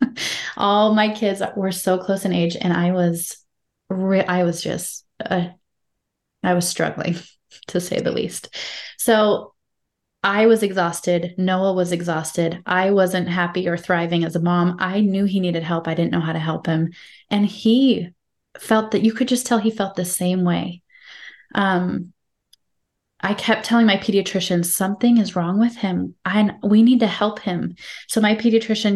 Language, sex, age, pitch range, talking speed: English, female, 20-39, 175-205 Hz, 170 wpm